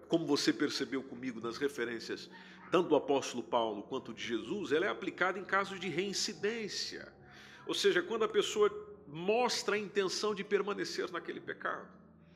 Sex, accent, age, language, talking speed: male, Brazilian, 50-69, Portuguese, 155 wpm